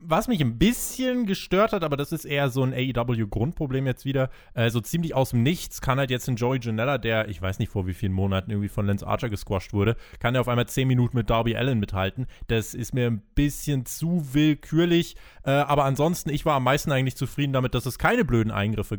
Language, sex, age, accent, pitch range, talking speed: German, male, 20-39, German, 115-160 Hz, 235 wpm